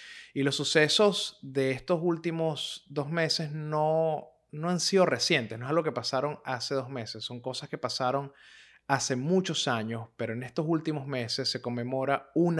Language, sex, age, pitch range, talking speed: Spanish, male, 30-49, 120-145 Hz, 170 wpm